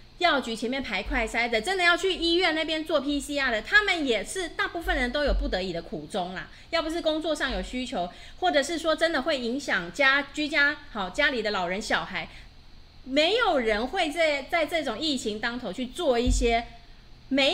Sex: female